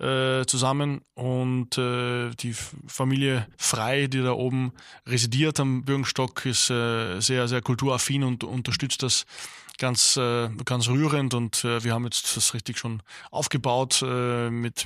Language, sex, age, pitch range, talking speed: German, male, 20-39, 120-135 Hz, 120 wpm